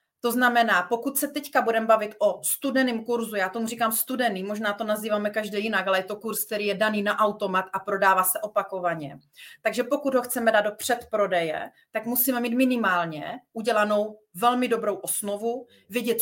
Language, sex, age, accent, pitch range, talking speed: Czech, female, 30-49, native, 190-235 Hz, 180 wpm